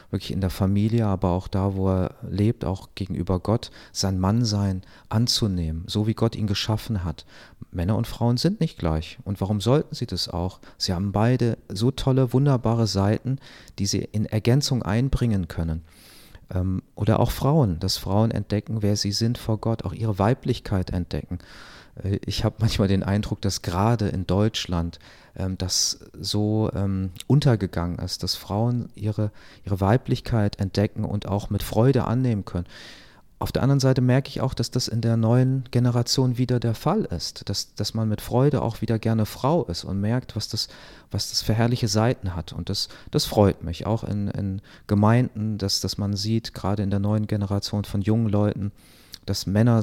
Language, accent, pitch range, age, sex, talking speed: German, German, 95-115 Hz, 40-59, male, 180 wpm